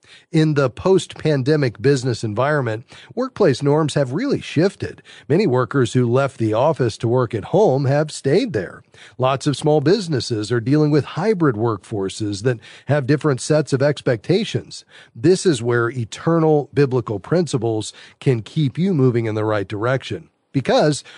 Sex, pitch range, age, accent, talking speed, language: male, 125-160 Hz, 40-59, American, 150 wpm, English